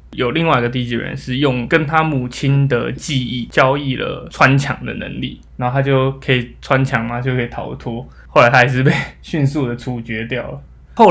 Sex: male